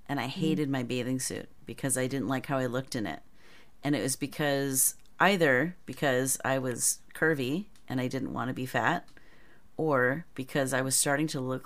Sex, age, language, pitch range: female, 30-49, English, 125-145 Hz